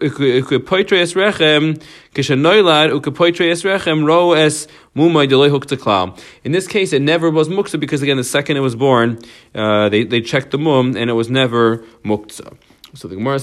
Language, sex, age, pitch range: English, male, 40-59, 115-155 Hz